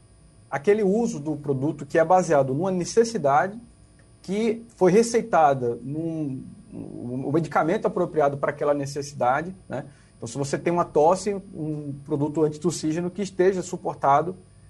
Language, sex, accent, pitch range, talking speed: Portuguese, male, Brazilian, 140-175 Hz, 130 wpm